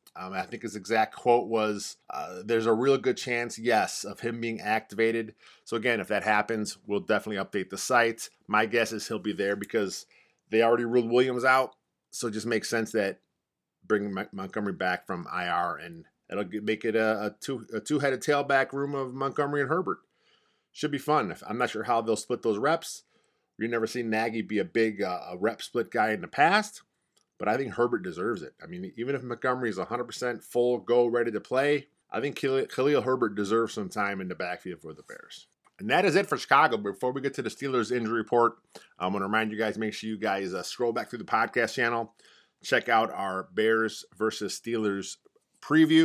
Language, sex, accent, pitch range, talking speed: English, male, American, 105-120 Hz, 205 wpm